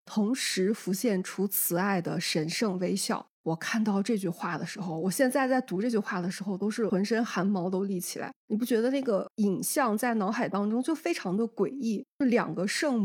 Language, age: Chinese, 20-39